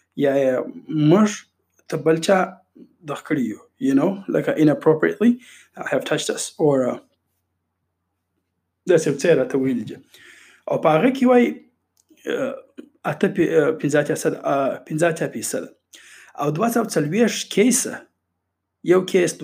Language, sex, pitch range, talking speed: Urdu, male, 150-210 Hz, 30 wpm